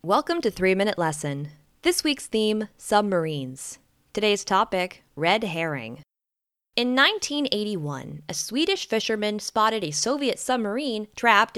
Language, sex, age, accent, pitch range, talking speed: English, female, 20-39, American, 170-235 Hz, 115 wpm